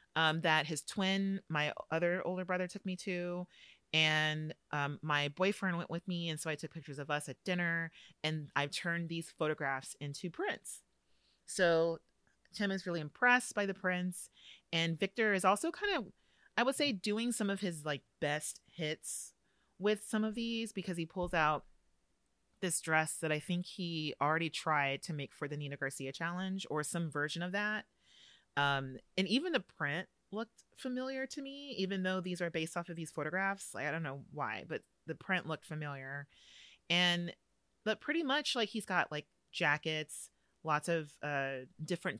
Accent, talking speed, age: American, 180 wpm, 30-49